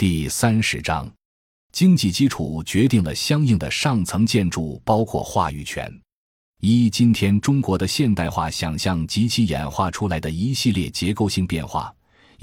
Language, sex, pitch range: Chinese, male, 80-110 Hz